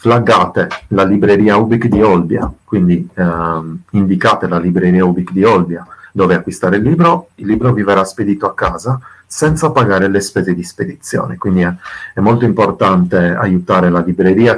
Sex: male